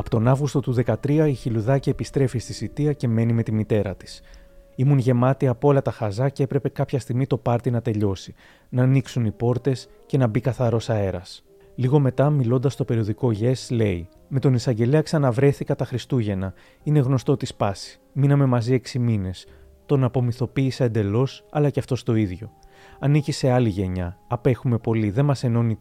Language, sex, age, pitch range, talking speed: Greek, male, 30-49, 110-140 Hz, 180 wpm